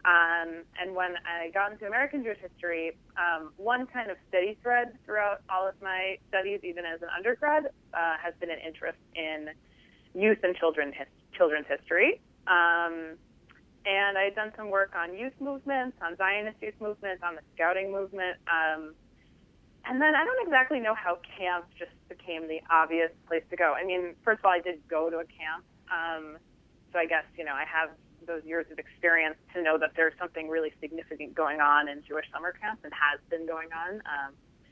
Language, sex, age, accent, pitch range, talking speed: English, female, 20-39, American, 160-195 Hz, 190 wpm